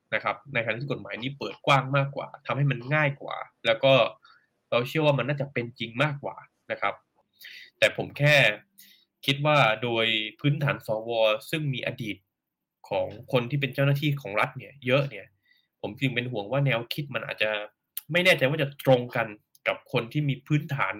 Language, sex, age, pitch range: Thai, male, 10-29, 115-145 Hz